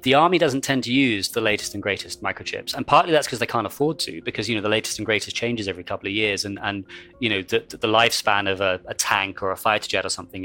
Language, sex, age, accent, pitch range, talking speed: English, male, 30-49, British, 100-120 Hz, 275 wpm